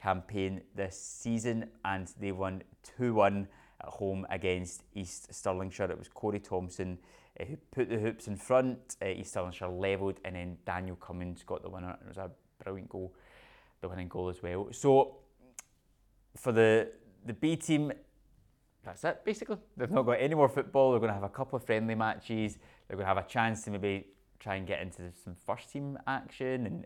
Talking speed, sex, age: 185 wpm, male, 20-39